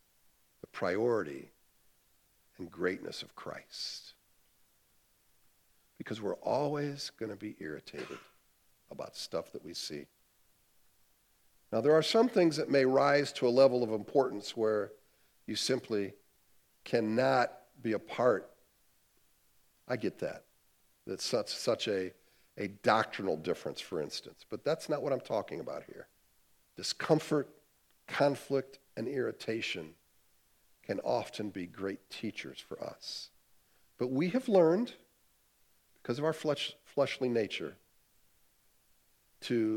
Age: 50-69